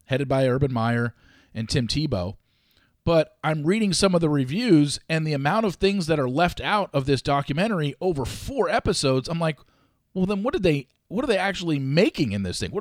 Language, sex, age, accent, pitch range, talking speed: English, male, 40-59, American, 130-185 Hz, 210 wpm